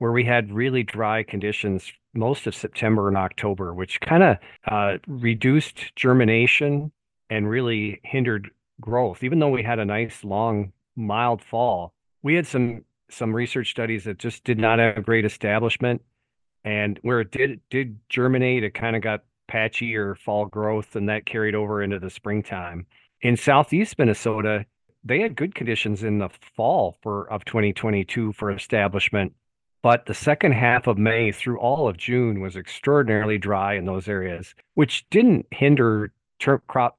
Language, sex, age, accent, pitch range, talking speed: English, male, 40-59, American, 100-120 Hz, 165 wpm